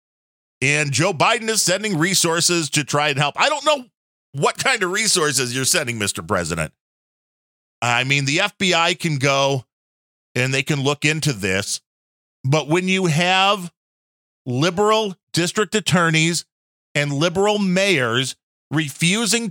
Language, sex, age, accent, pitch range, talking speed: English, male, 40-59, American, 140-185 Hz, 135 wpm